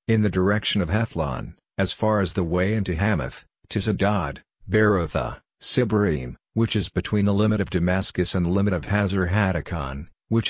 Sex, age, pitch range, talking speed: male, 50-69, 90-105 Hz, 170 wpm